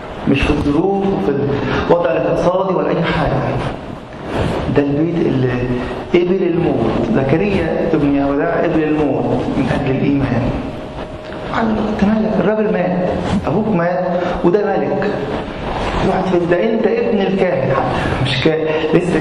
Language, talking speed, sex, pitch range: English, 120 wpm, male, 135-180 Hz